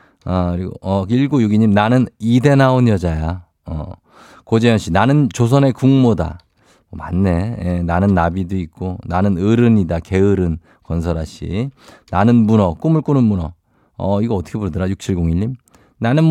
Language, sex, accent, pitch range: Korean, male, native, 95-130 Hz